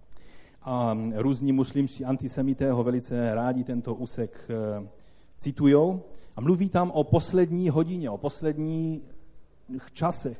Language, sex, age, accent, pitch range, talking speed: Czech, male, 40-59, native, 115-165 Hz, 110 wpm